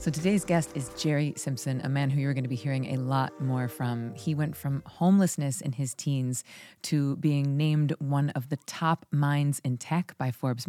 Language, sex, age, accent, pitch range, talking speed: English, female, 30-49, American, 135-160 Hz, 210 wpm